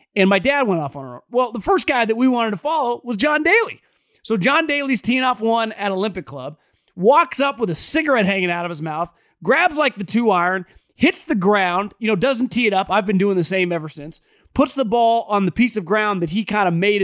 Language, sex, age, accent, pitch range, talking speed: English, male, 30-49, American, 200-275 Hz, 255 wpm